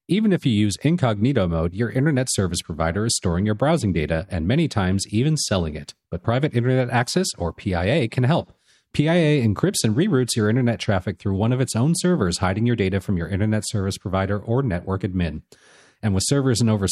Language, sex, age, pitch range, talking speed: English, male, 40-59, 95-135 Hz, 205 wpm